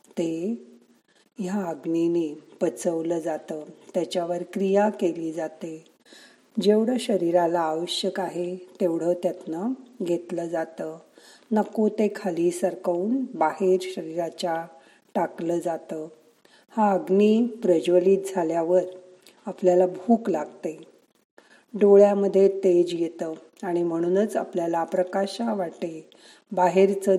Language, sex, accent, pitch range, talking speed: Marathi, female, native, 170-195 Hz, 95 wpm